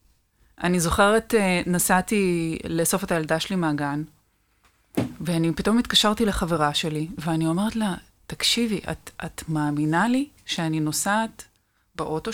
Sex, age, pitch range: female, 20-39, 155-210 Hz